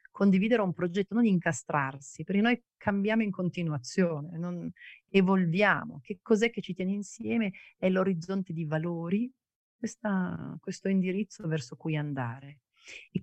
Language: Italian